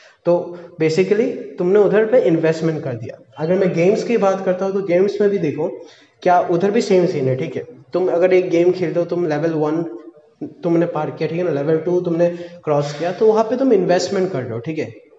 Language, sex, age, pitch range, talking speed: Hindi, male, 20-39, 150-195 Hz, 125 wpm